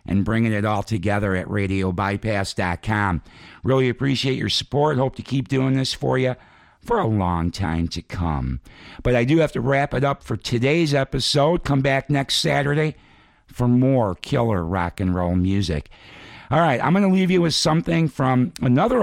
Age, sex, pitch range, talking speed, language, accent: 60-79, male, 100-130 Hz, 180 wpm, English, American